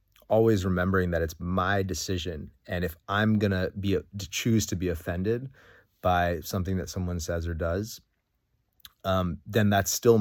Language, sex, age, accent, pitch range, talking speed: English, male, 30-49, American, 85-95 Hz, 160 wpm